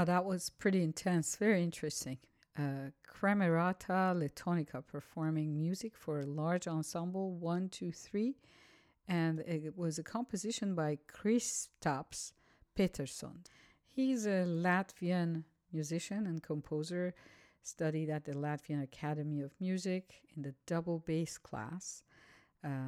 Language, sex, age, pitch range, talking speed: English, female, 50-69, 155-185 Hz, 120 wpm